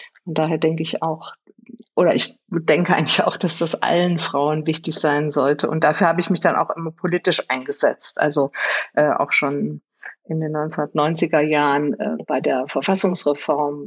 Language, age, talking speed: German, 50-69, 170 wpm